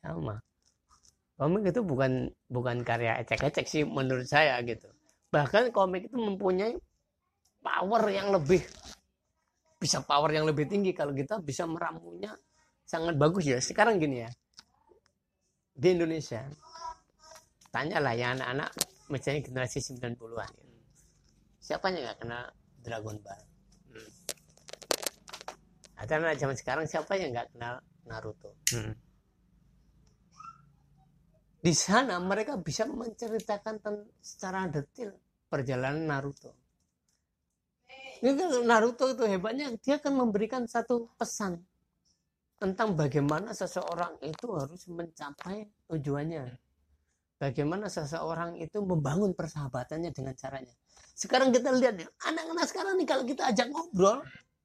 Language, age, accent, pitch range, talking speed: Indonesian, 30-49, native, 135-215 Hz, 110 wpm